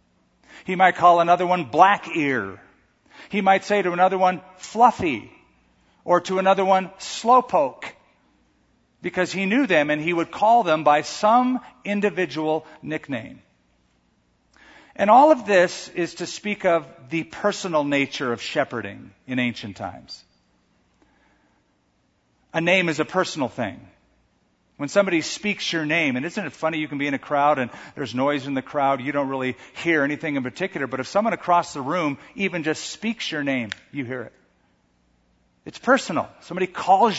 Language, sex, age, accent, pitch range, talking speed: English, male, 50-69, American, 130-185 Hz, 160 wpm